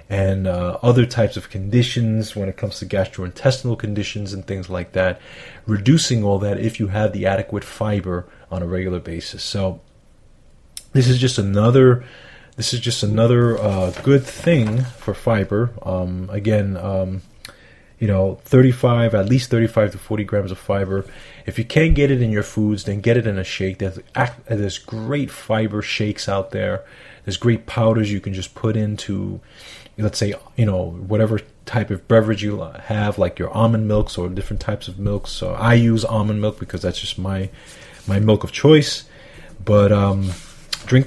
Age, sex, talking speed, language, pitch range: 30-49, male, 175 wpm, English, 95-120 Hz